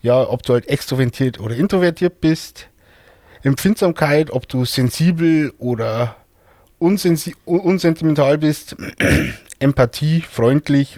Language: German